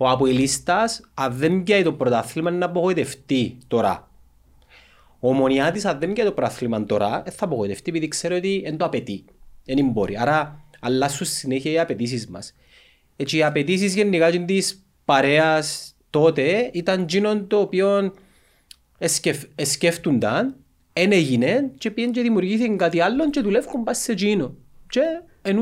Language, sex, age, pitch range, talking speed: Greek, male, 30-49, 125-195 Hz, 140 wpm